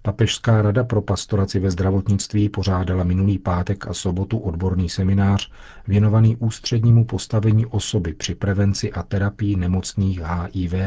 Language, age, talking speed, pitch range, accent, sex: Czech, 40-59, 125 wpm, 95-110 Hz, native, male